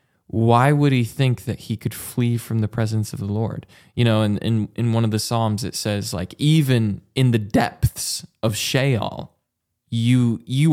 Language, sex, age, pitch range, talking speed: English, male, 20-39, 105-125 Hz, 195 wpm